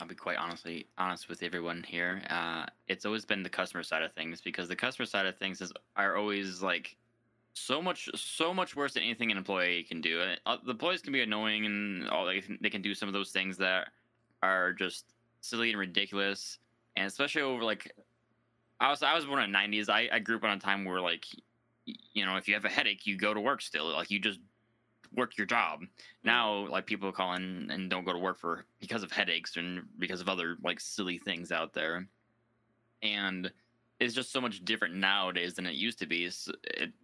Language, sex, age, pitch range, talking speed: English, male, 20-39, 90-110 Hz, 225 wpm